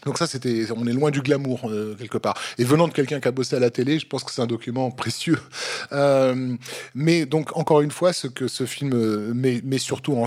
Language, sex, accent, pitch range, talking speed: French, male, French, 115-135 Hz, 245 wpm